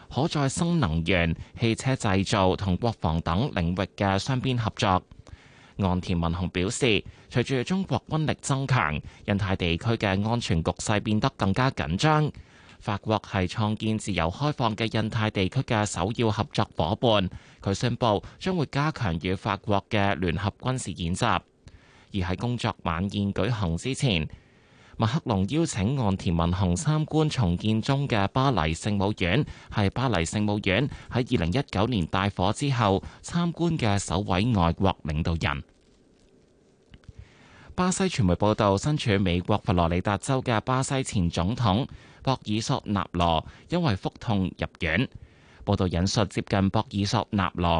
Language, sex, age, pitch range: Chinese, male, 20-39, 90-120 Hz